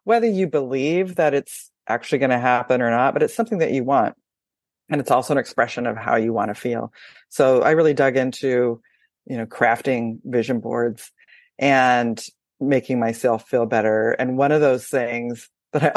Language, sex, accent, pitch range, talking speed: English, female, American, 115-140 Hz, 190 wpm